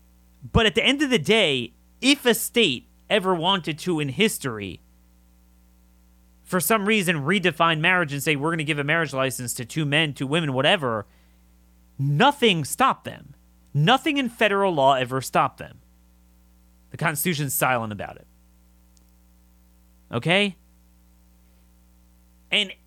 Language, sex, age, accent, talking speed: English, male, 30-49, American, 135 wpm